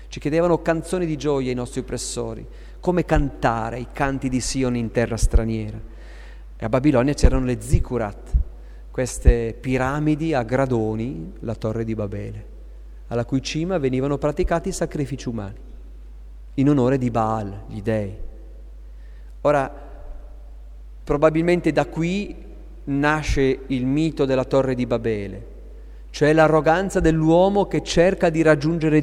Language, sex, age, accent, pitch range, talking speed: Italian, male, 40-59, native, 105-150 Hz, 130 wpm